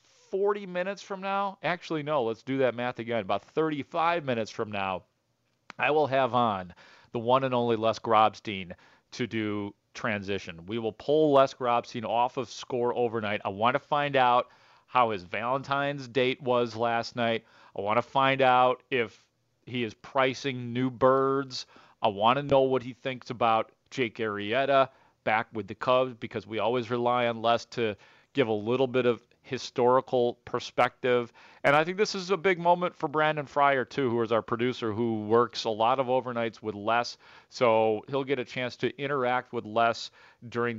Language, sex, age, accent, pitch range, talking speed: English, male, 40-59, American, 115-140 Hz, 180 wpm